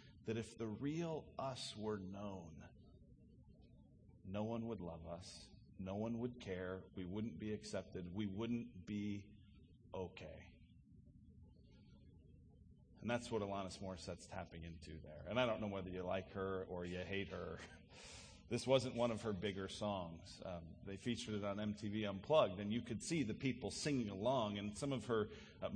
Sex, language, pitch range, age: male, English, 95-120 Hz, 40-59